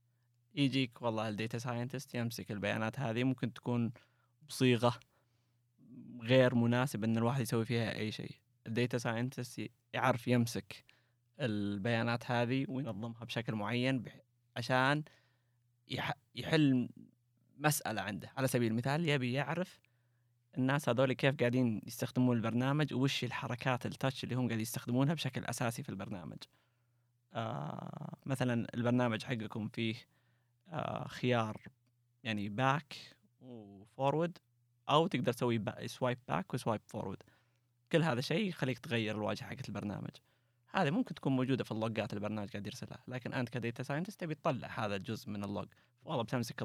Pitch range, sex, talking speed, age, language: 115-130 Hz, male, 125 wpm, 20-39, Arabic